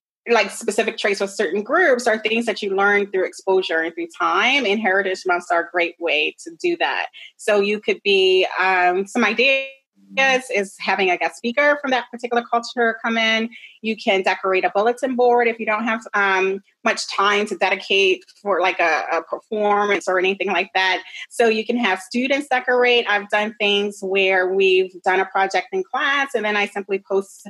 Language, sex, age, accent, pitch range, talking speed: English, female, 30-49, American, 190-235 Hz, 190 wpm